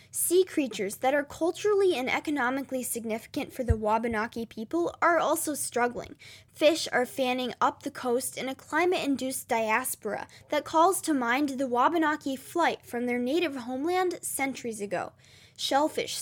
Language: English